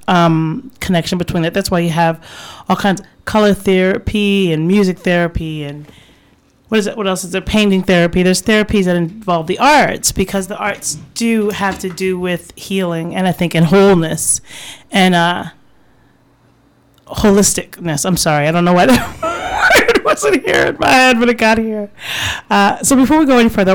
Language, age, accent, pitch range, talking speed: English, 30-49, American, 180-220 Hz, 180 wpm